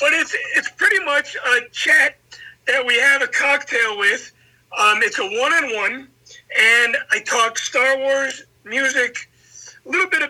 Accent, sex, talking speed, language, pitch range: American, male, 155 wpm, English, 205-290 Hz